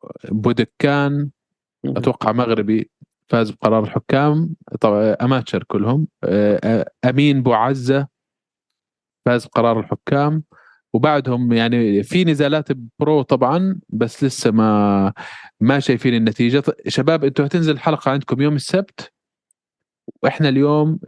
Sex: male